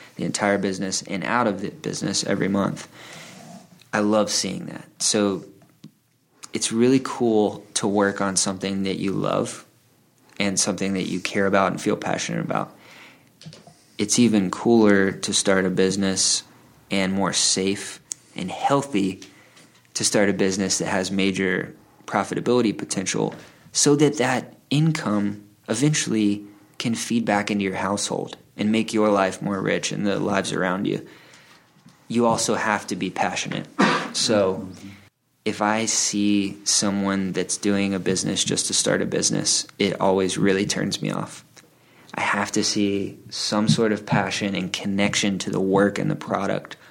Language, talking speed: English, 155 wpm